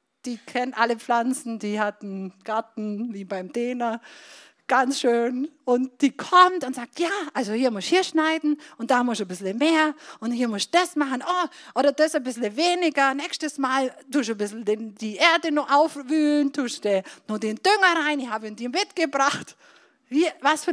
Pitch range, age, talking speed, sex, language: 220-310 Hz, 50-69, 190 wpm, female, German